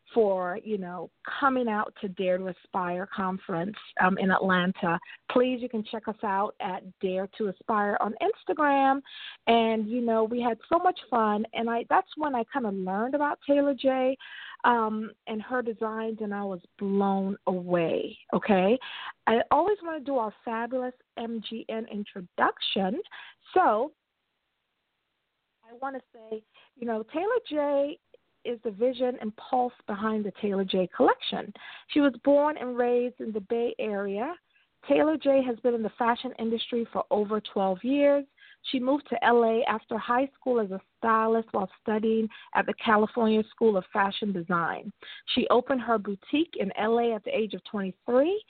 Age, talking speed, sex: 40-59, 165 wpm, female